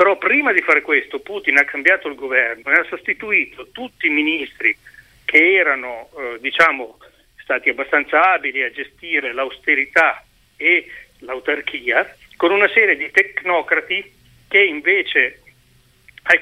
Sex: male